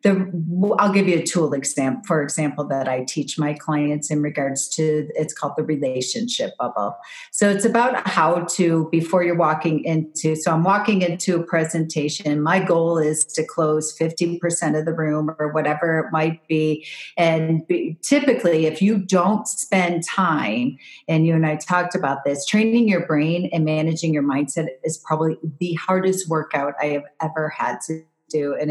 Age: 40-59